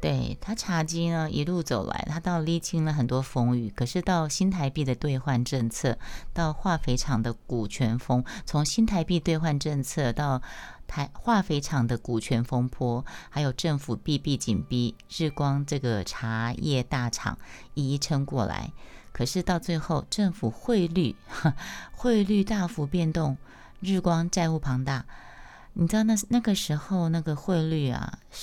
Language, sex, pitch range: Chinese, female, 120-165 Hz